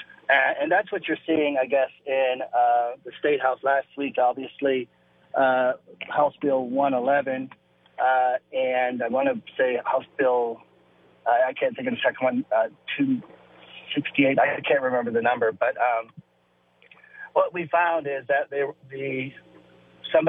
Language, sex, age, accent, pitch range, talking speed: English, male, 40-59, American, 125-150 Hz, 155 wpm